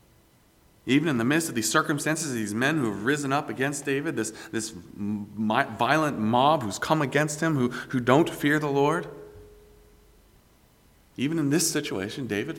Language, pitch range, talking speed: English, 105-150 Hz, 160 wpm